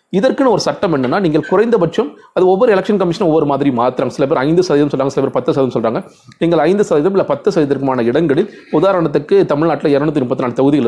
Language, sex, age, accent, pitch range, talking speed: Tamil, male, 30-49, native, 130-170 Hz, 115 wpm